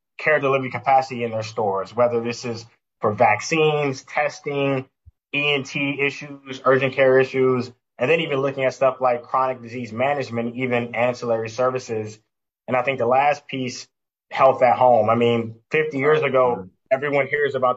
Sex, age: male, 20-39